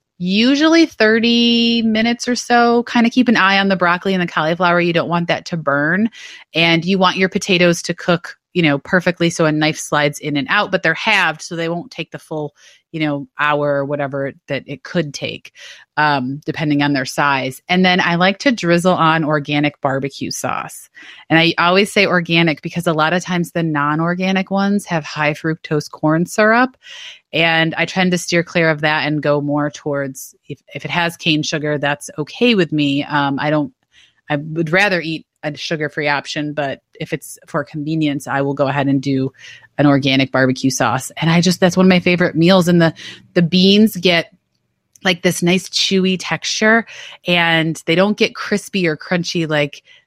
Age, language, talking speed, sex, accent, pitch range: 30-49, English, 195 wpm, female, American, 145-180 Hz